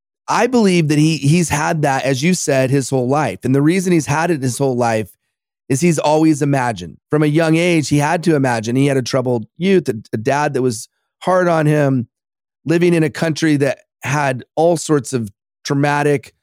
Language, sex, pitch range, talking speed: English, male, 130-165 Hz, 205 wpm